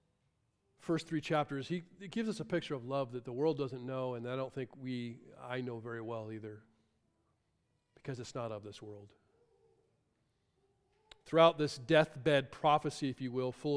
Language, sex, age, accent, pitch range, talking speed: English, male, 40-59, American, 125-180 Hz, 175 wpm